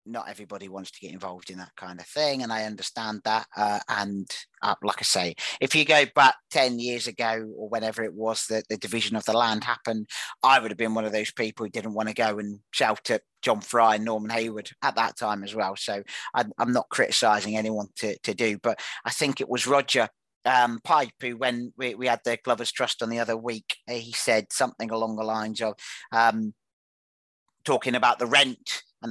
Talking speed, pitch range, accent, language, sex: 220 wpm, 110-120 Hz, British, English, male